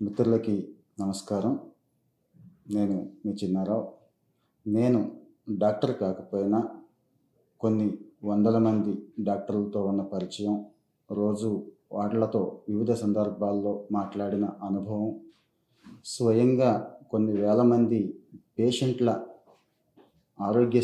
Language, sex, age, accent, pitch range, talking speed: Telugu, male, 30-49, native, 105-120 Hz, 75 wpm